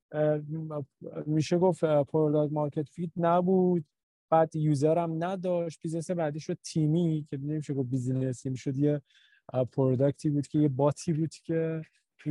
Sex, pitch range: male, 140-165 Hz